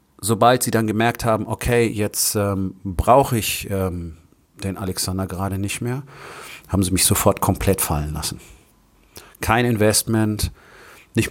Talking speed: 140 wpm